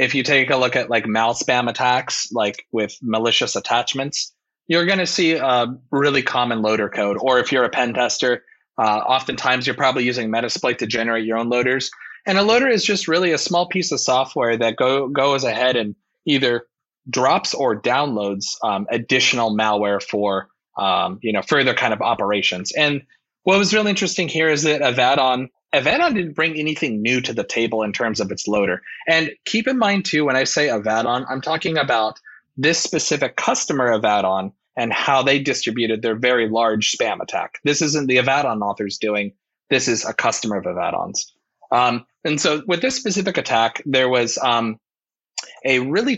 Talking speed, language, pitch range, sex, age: 185 wpm, English, 115-155 Hz, male, 30-49